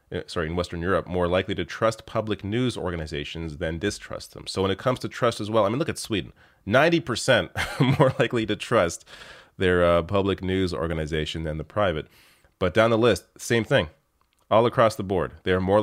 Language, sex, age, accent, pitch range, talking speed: English, male, 30-49, American, 80-105 Hz, 200 wpm